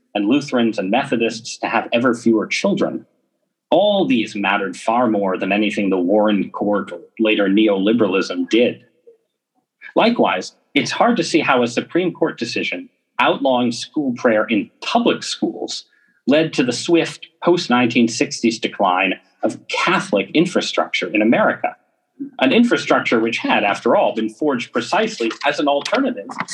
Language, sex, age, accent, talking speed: English, male, 40-59, American, 140 wpm